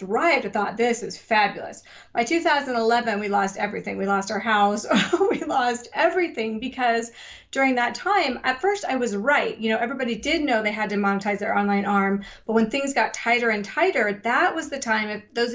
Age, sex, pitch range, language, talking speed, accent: 30-49, female, 205-245 Hz, English, 200 wpm, American